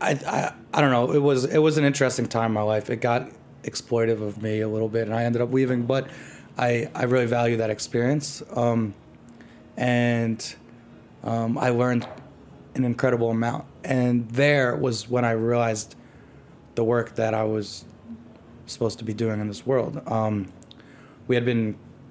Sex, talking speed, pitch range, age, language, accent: male, 175 wpm, 110-125 Hz, 20-39, English, American